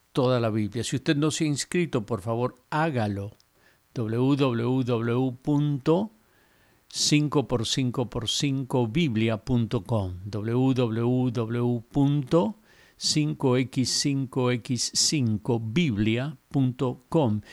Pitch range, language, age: 120-145 Hz, Spanish, 50-69